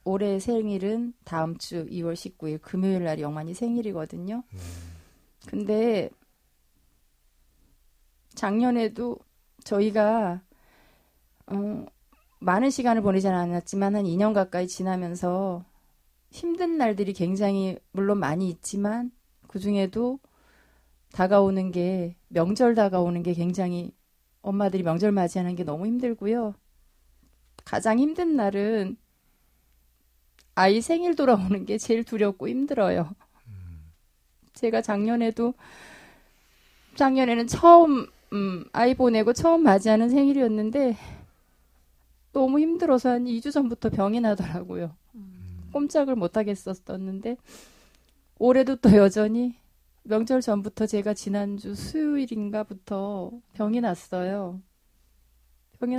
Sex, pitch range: female, 175-235 Hz